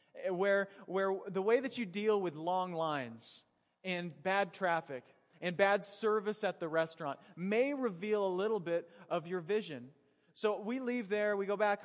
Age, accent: 30-49, American